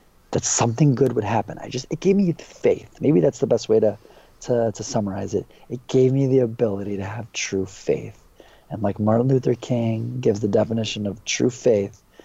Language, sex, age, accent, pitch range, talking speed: English, male, 40-59, American, 110-130 Hz, 200 wpm